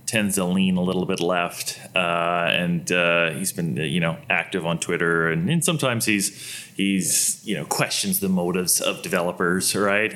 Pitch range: 90-115 Hz